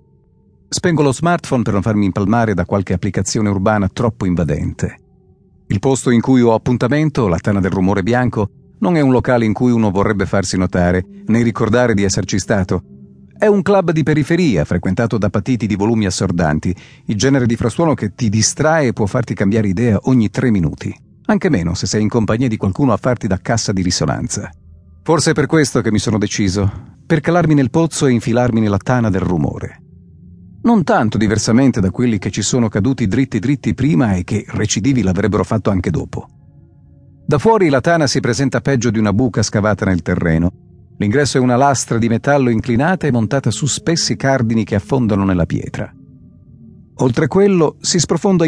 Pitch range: 100-135 Hz